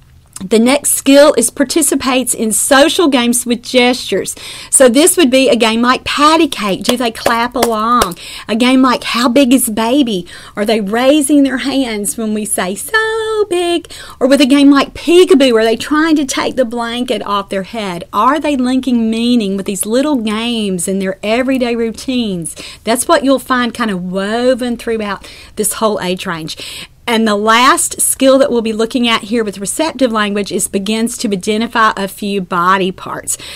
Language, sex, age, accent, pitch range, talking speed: English, female, 40-59, American, 210-265 Hz, 180 wpm